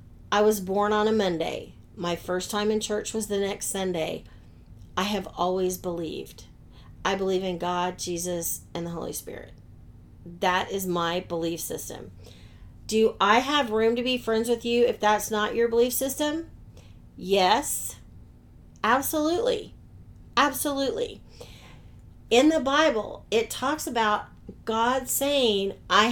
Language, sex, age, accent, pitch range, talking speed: English, female, 40-59, American, 185-260 Hz, 140 wpm